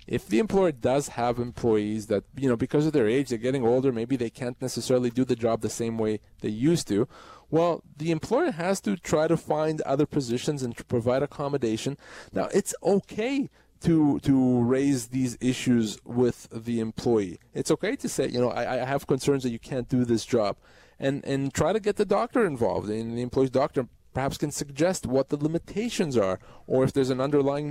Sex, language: male, English